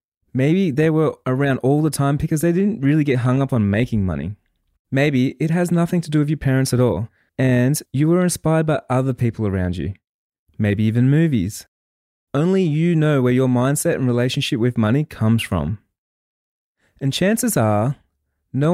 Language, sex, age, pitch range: English, male, 20-39, 110-150 Hz